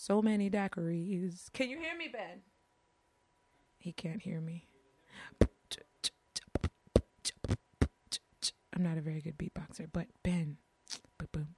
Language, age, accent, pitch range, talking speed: English, 30-49, American, 170-245 Hz, 105 wpm